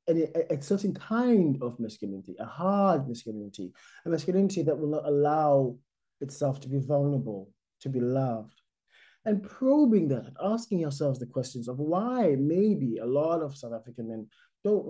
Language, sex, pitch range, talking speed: English, male, 135-210 Hz, 160 wpm